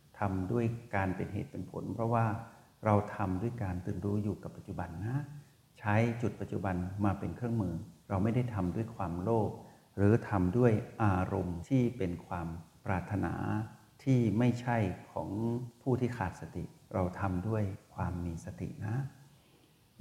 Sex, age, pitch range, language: male, 60-79, 95-120 Hz, Thai